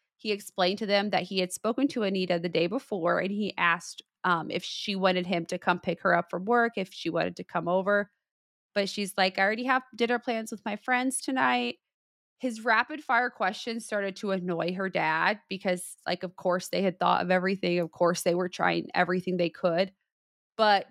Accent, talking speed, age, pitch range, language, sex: American, 210 wpm, 30-49, 180-215 Hz, English, female